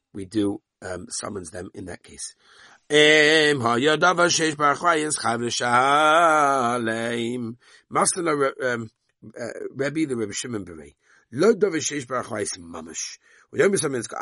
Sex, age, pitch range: male, 50-69, 110-150 Hz